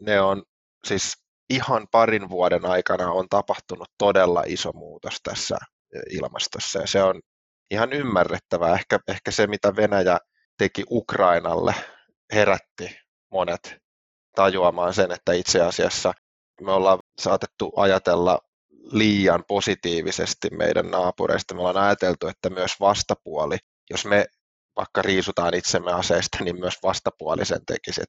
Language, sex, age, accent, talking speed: English, male, 20-39, Finnish, 120 wpm